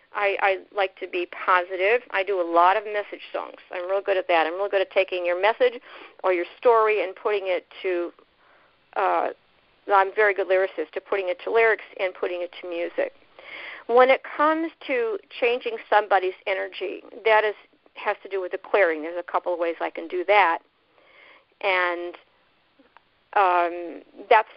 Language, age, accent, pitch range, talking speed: English, 50-69, American, 185-250 Hz, 185 wpm